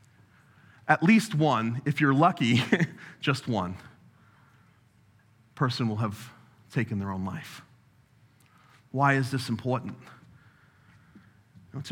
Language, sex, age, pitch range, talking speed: English, male, 30-49, 125-195 Hz, 100 wpm